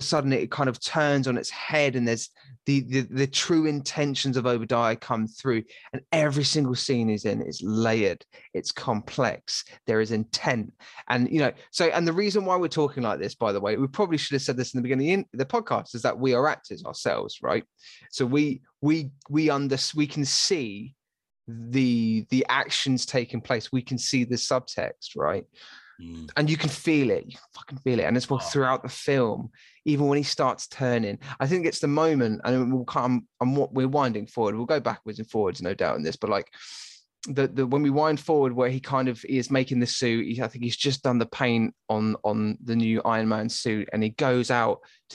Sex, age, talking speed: male, 20-39, 220 wpm